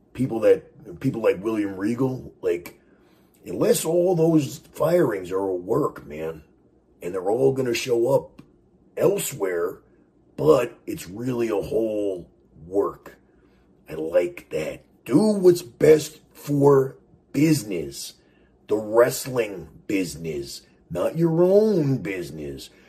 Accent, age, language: American, 40-59, English